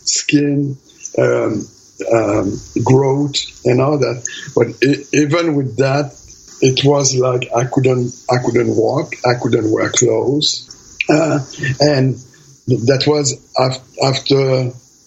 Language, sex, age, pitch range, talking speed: English, male, 60-79, 120-140 Hz, 115 wpm